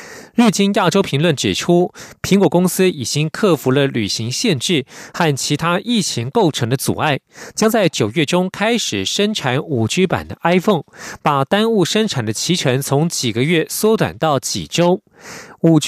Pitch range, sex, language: 140-190 Hz, male, German